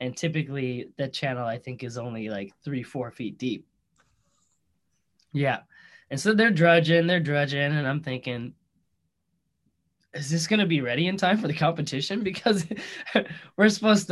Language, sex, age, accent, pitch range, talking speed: English, male, 10-29, American, 135-180 Hz, 155 wpm